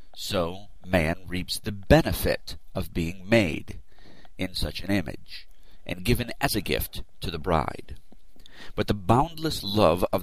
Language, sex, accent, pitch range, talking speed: English, male, American, 85-105 Hz, 145 wpm